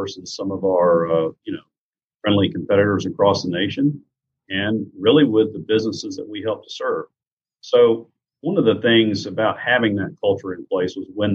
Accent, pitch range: American, 90-115 Hz